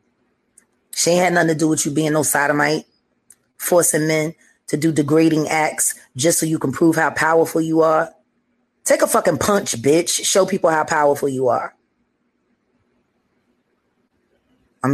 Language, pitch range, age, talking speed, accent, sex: English, 155-185 Hz, 20-39, 155 wpm, American, female